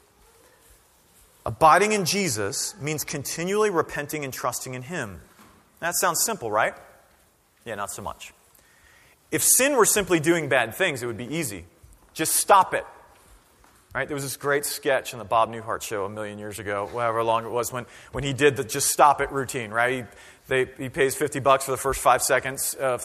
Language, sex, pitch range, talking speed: English, male, 125-205 Hz, 190 wpm